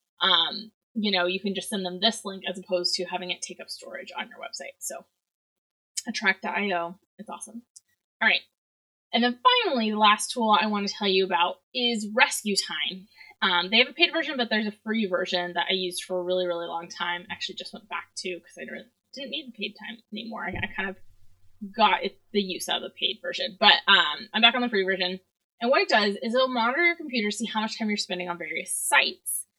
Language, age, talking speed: English, 20-39, 230 wpm